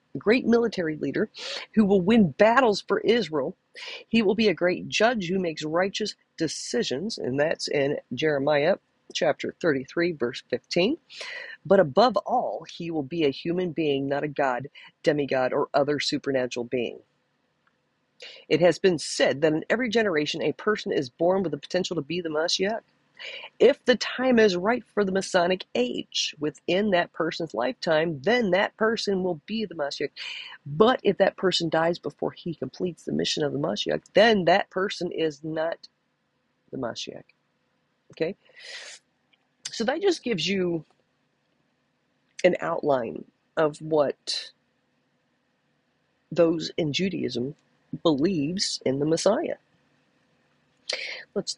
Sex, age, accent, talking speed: female, 40-59, American, 140 wpm